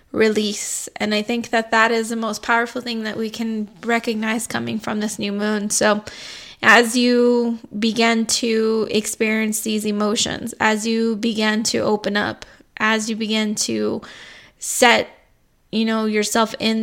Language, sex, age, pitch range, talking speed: English, female, 20-39, 210-225 Hz, 155 wpm